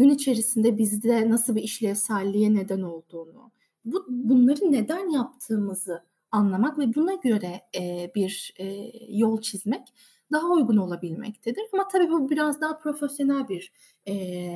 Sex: female